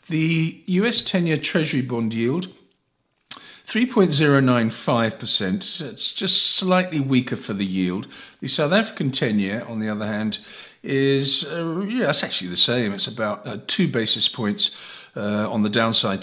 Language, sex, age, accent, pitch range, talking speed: English, male, 50-69, British, 105-150 Hz, 150 wpm